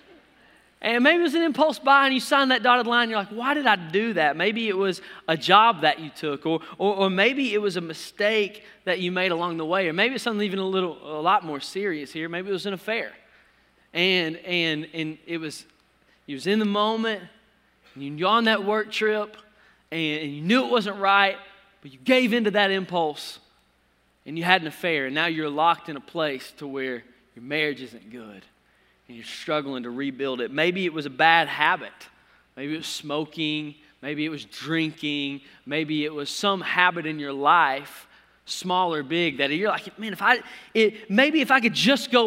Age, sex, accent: 20-39, male, American